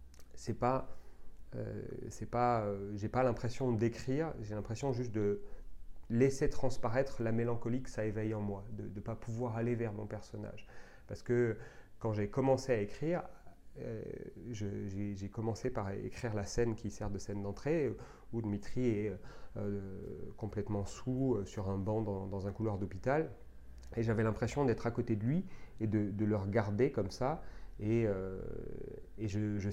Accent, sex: French, male